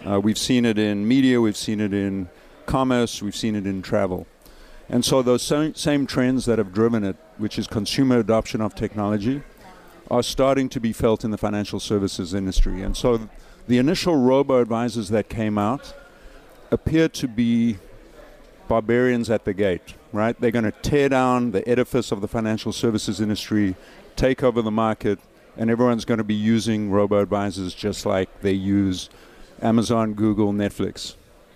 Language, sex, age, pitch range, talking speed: English, male, 50-69, 105-125 Hz, 165 wpm